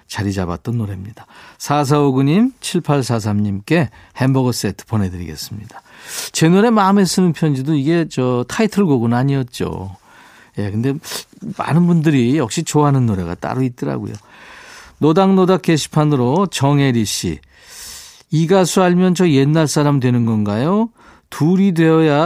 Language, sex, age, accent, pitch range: Korean, male, 40-59, native, 115-165 Hz